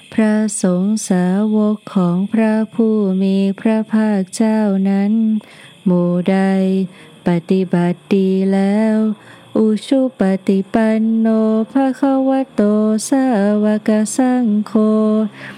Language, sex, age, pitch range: Thai, female, 20-39, 195-225 Hz